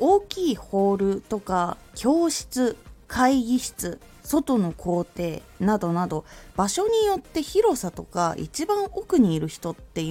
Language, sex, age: Japanese, female, 20-39